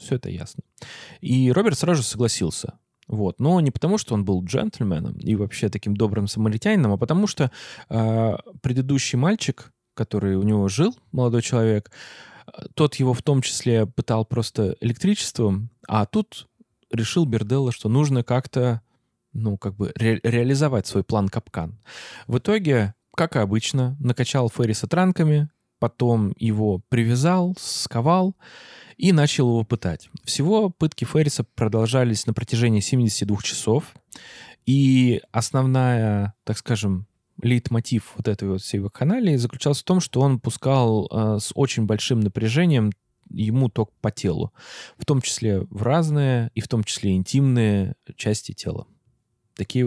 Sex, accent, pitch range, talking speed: male, native, 110-135 Hz, 145 wpm